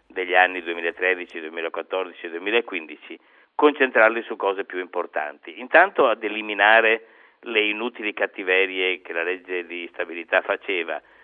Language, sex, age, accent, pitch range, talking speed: Italian, male, 50-69, native, 90-125 Hz, 125 wpm